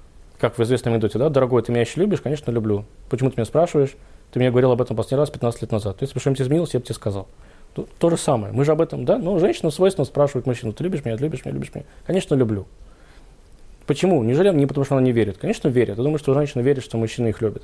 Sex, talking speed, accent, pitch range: male, 265 wpm, native, 115-155 Hz